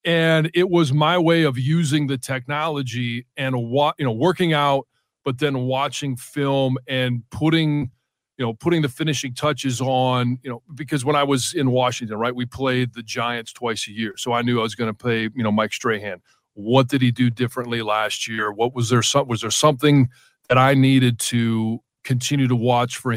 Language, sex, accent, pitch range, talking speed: English, male, American, 120-140 Hz, 200 wpm